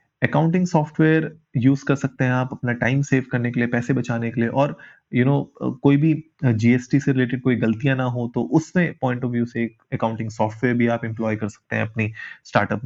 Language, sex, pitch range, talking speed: Hindi, male, 115-140 Hz, 225 wpm